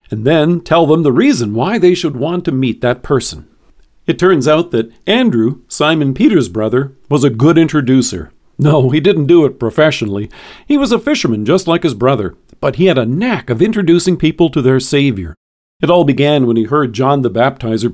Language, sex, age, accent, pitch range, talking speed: English, male, 50-69, American, 130-180 Hz, 200 wpm